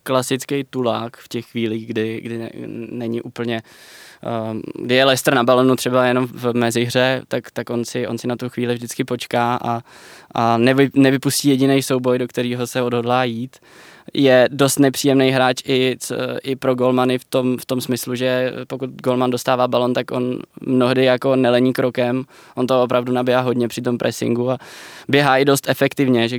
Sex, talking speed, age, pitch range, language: male, 180 wpm, 20-39, 125-140 Hz, Czech